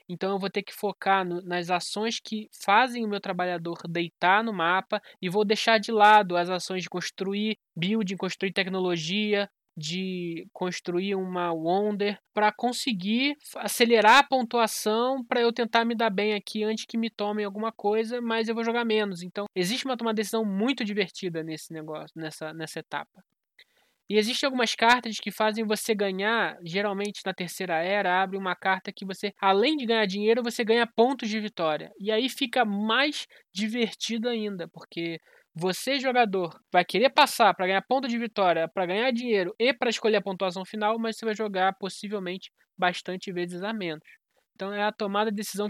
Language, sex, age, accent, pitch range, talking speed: Portuguese, male, 20-39, Brazilian, 185-225 Hz, 175 wpm